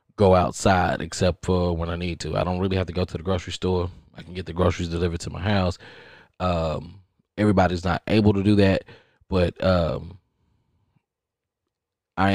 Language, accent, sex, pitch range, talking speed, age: English, American, male, 85-95 Hz, 180 wpm, 20-39